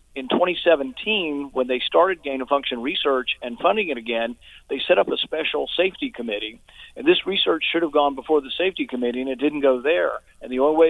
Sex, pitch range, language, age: male, 120-155 Hz, English, 50-69